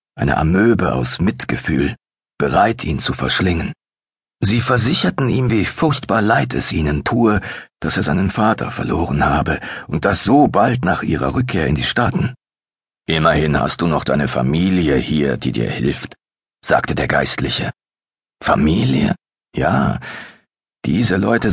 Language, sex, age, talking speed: German, male, 50-69, 140 wpm